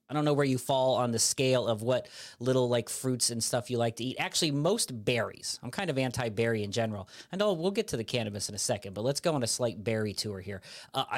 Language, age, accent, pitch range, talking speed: English, 40-59, American, 120-150 Hz, 265 wpm